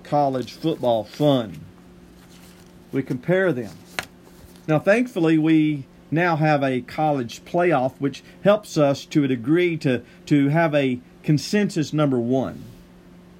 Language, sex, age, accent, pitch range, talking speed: English, male, 50-69, American, 130-180 Hz, 120 wpm